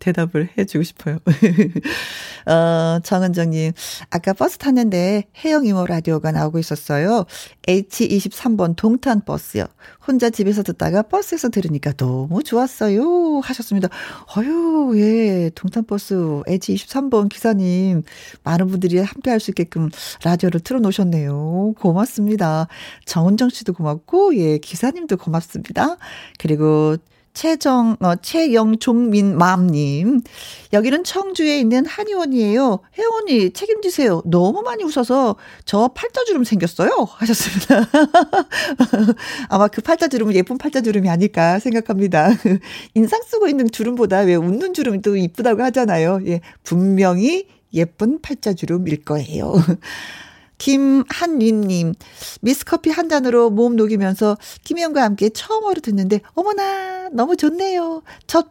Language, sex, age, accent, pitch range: Korean, female, 40-59, native, 180-270 Hz